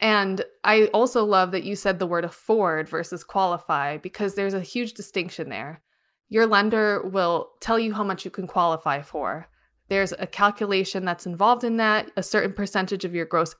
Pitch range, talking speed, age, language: 180-220 Hz, 185 wpm, 20-39, English